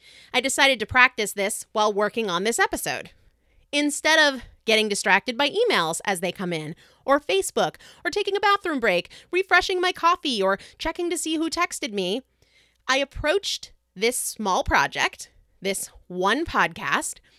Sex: female